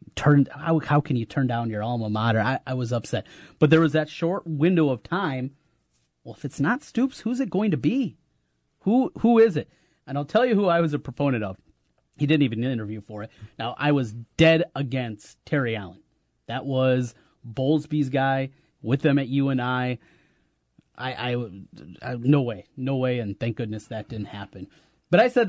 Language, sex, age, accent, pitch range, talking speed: English, male, 30-49, American, 120-165 Hz, 195 wpm